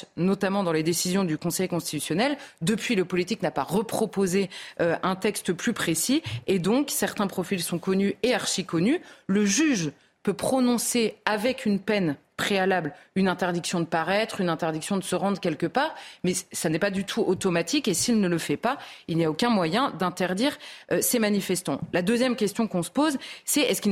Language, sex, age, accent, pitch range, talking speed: French, female, 30-49, French, 175-235 Hz, 195 wpm